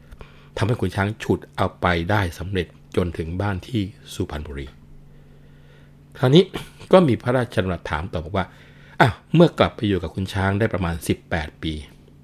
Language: Thai